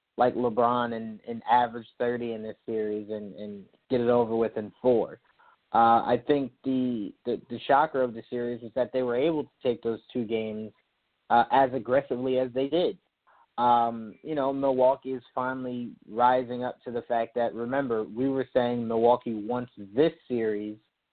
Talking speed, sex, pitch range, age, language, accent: 180 wpm, male, 115-135 Hz, 30-49, English, American